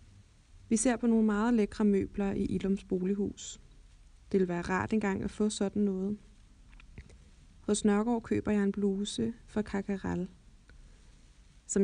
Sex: female